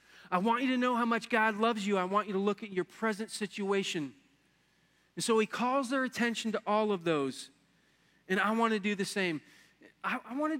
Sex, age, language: male, 40-59, English